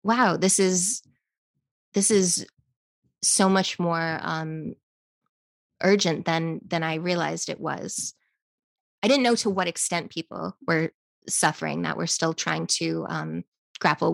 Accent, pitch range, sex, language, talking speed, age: American, 165-190 Hz, female, English, 135 wpm, 20-39